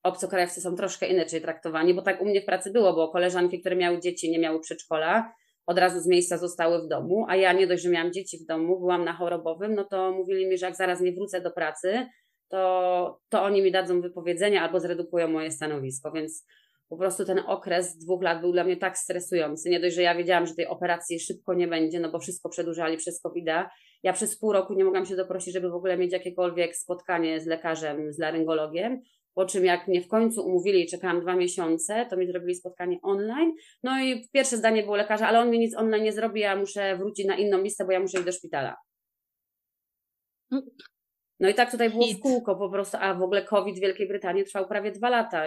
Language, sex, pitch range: Polish, female, 175-195 Hz